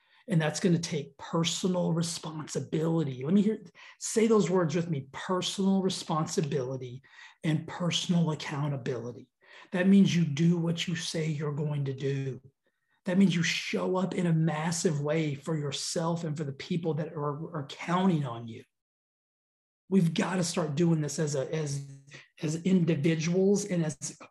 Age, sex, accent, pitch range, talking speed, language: 30-49, male, American, 145-180 Hz, 155 wpm, English